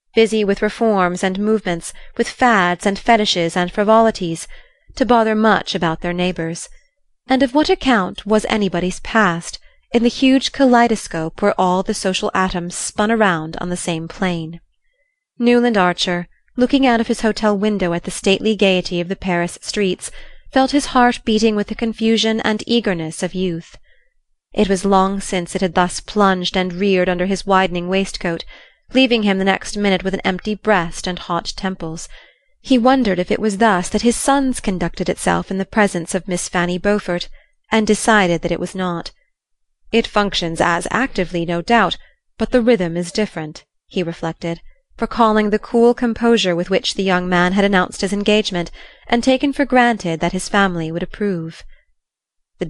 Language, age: Greek, 30-49